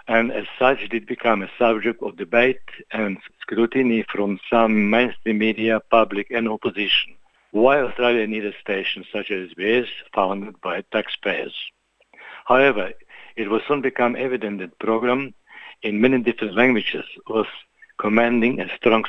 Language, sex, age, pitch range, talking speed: Italian, male, 60-79, 110-135 Hz, 140 wpm